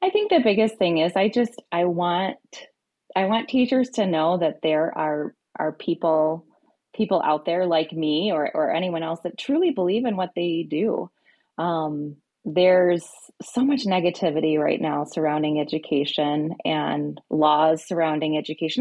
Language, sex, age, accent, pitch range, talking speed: English, female, 20-39, American, 155-190 Hz, 155 wpm